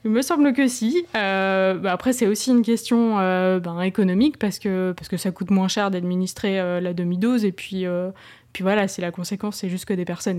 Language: French